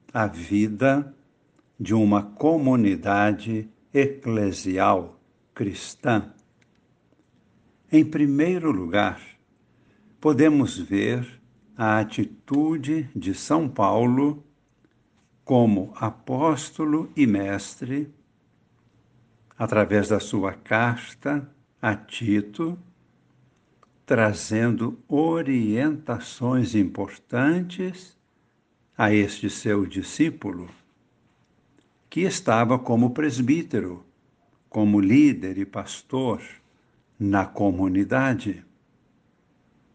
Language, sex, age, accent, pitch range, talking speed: Portuguese, male, 60-79, Brazilian, 105-140 Hz, 65 wpm